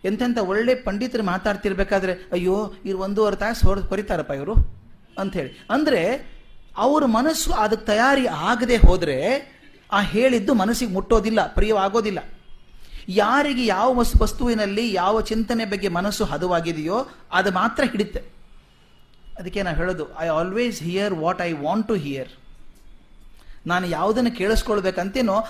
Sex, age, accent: male, 30-49, native